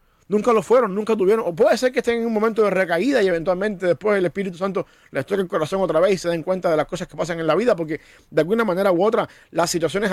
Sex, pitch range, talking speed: male, 165-200 Hz, 280 wpm